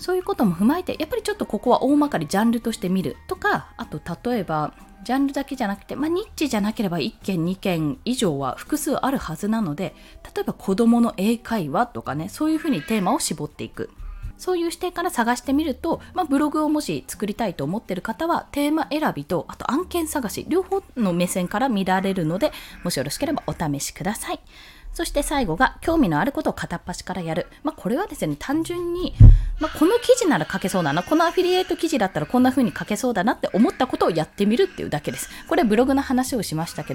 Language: Japanese